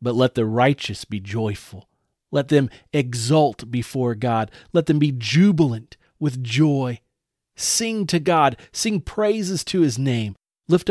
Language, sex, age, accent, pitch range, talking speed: English, male, 40-59, American, 115-150 Hz, 145 wpm